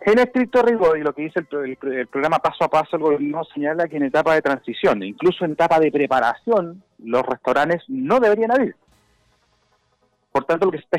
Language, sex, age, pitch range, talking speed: Spanish, male, 30-49, 120-165 Hz, 205 wpm